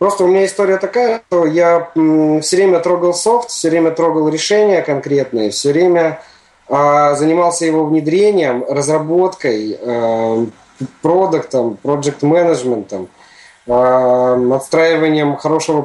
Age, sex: 20-39, male